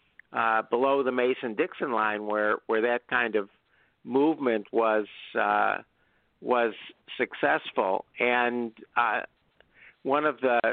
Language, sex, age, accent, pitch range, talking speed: English, male, 50-69, American, 115-140 Hz, 110 wpm